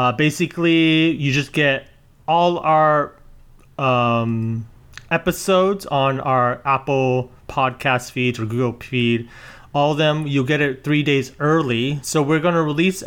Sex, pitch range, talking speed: male, 125-150 Hz, 140 wpm